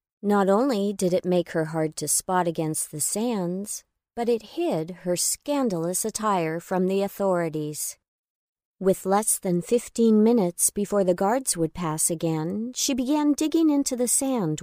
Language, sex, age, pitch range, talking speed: English, female, 40-59, 170-220 Hz, 155 wpm